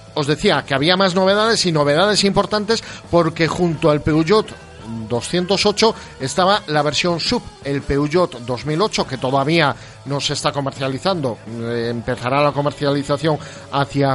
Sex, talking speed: male, 130 wpm